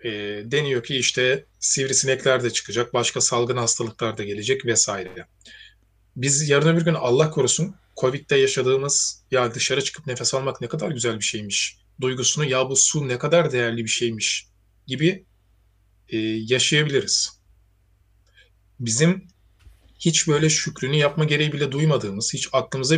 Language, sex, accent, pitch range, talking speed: Turkish, male, native, 105-145 Hz, 135 wpm